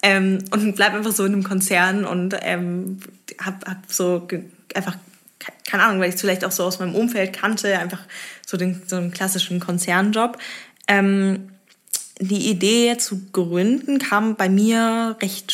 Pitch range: 170-195 Hz